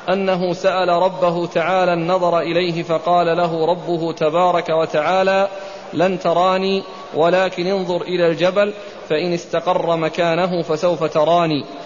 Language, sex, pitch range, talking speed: Arabic, male, 170-190 Hz, 110 wpm